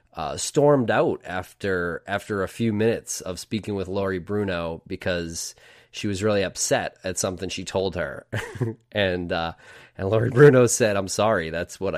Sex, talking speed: male, 165 wpm